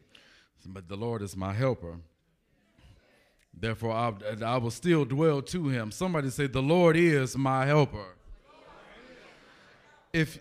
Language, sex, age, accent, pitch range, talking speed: English, male, 40-59, American, 115-155 Hz, 125 wpm